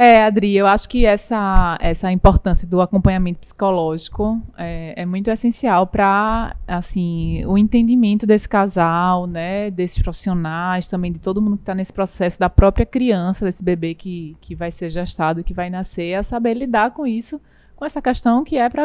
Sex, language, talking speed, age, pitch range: female, Portuguese, 180 wpm, 20-39, 180-225 Hz